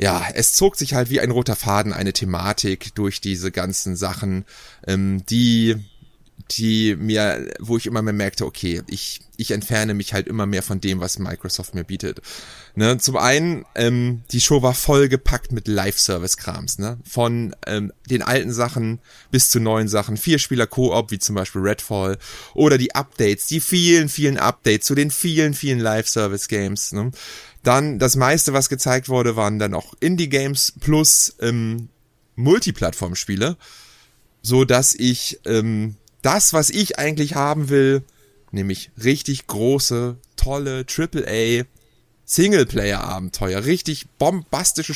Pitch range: 105-140 Hz